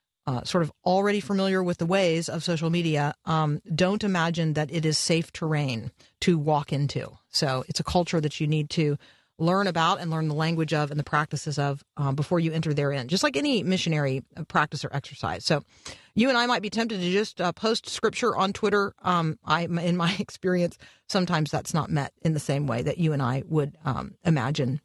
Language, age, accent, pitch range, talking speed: English, 40-59, American, 150-185 Hz, 210 wpm